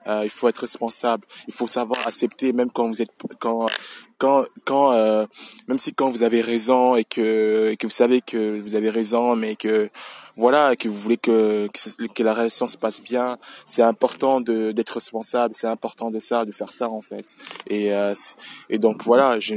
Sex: male